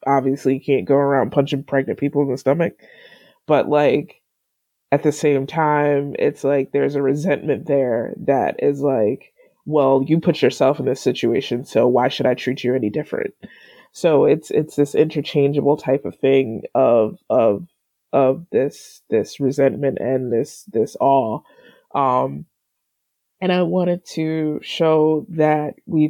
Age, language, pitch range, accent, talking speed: 20-39, English, 135-155 Hz, American, 155 wpm